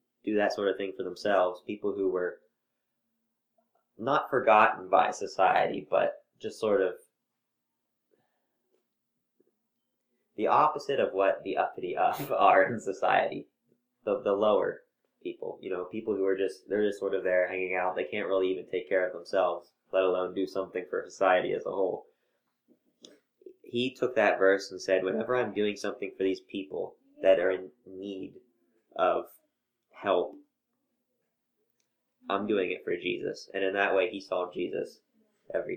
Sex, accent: male, American